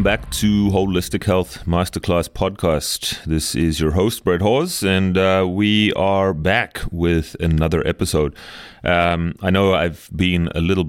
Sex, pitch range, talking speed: male, 75-90 Hz, 150 wpm